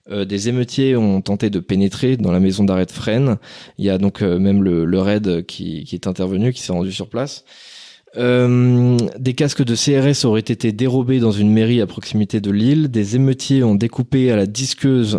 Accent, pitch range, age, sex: French, 100-125 Hz, 20-39, male